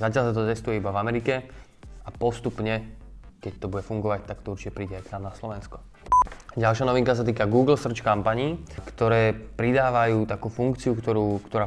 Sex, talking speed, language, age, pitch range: male, 180 wpm, Slovak, 20-39, 100-115 Hz